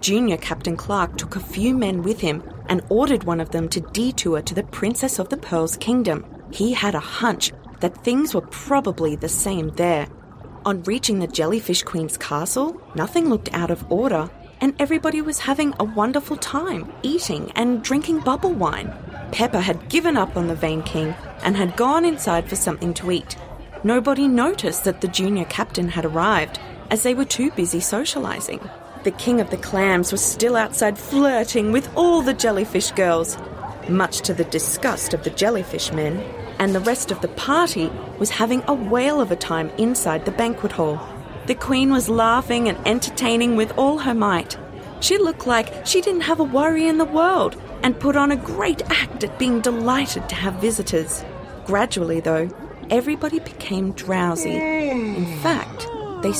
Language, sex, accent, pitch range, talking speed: English, female, Australian, 175-270 Hz, 180 wpm